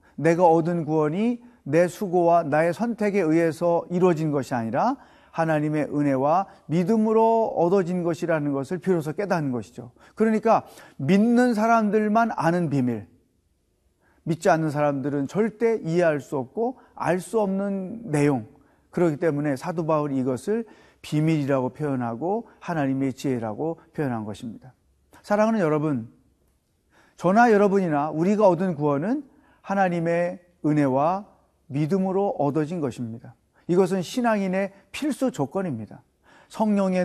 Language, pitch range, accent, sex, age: Korean, 145-200 Hz, native, male, 40-59